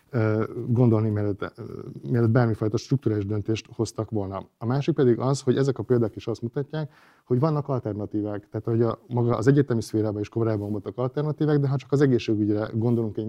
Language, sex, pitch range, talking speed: Hungarian, male, 110-130 Hz, 170 wpm